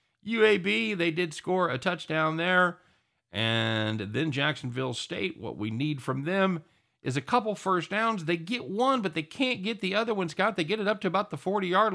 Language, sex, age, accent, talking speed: English, male, 50-69, American, 200 wpm